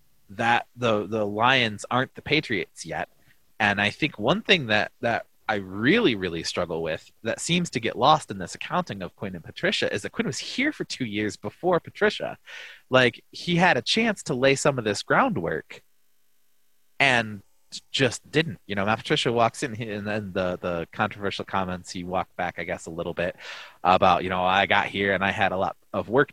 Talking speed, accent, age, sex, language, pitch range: 205 wpm, American, 30-49, male, English, 95-125 Hz